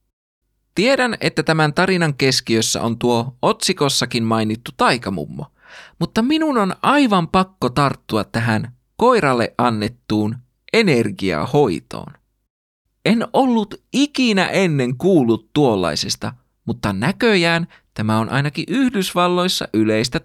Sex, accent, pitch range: male, native, 115-195 Hz